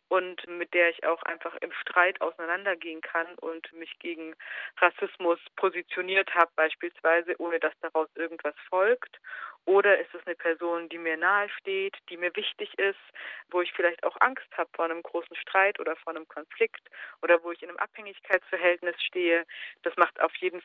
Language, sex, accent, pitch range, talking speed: German, female, German, 150-175 Hz, 175 wpm